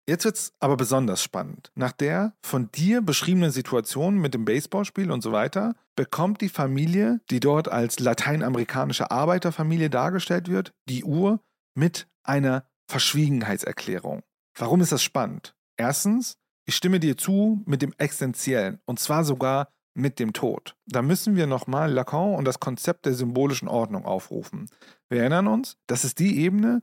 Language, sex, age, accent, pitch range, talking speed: German, male, 40-59, German, 125-175 Hz, 155 wpm